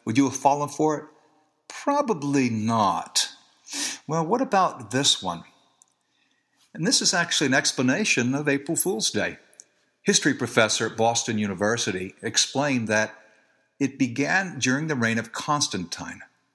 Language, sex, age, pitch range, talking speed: English, male, 60-79, 105-140 Hz, 135 wpm